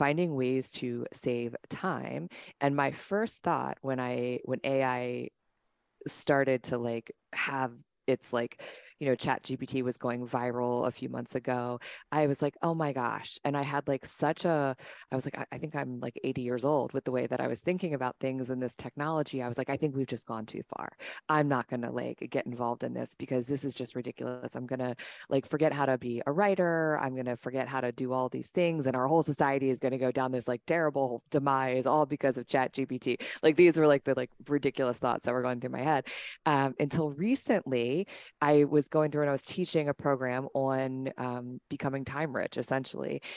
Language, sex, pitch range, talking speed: English, female, 125-145 Hz, 215 wpm